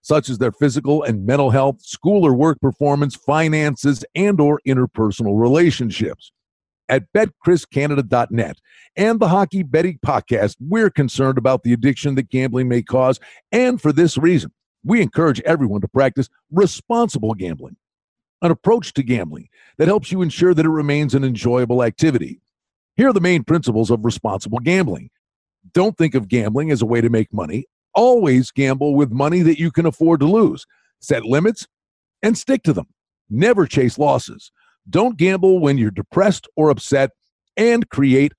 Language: English